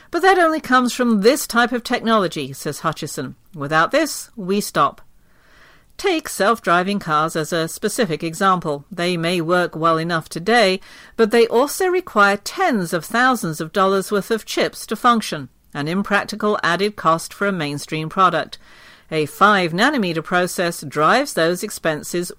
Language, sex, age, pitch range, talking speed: English, female, 50-69, 160-230 Hz, 150 wpm